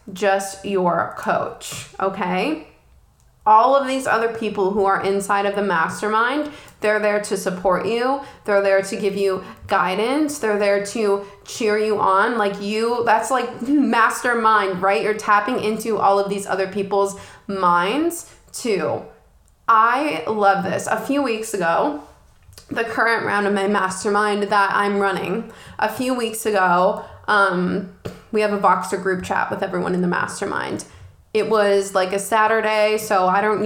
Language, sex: English, female